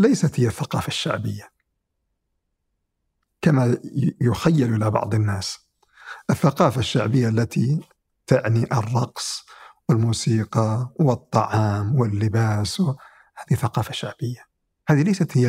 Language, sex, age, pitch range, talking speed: Arabic, male, 50-69, 110-145 Hz, 90 wpm